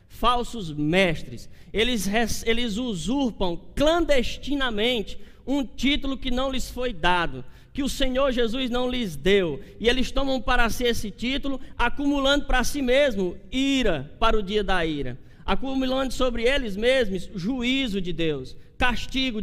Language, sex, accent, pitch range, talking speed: Portuguese, male, Brazilian, 190-260 Hz, 140 wpm